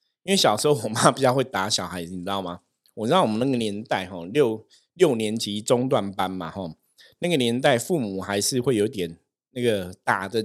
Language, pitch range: Chinese, 100-125 Hz